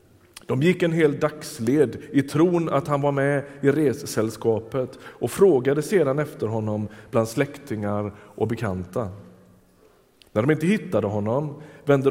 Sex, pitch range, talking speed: male, 110-150 Hz, 140 wpm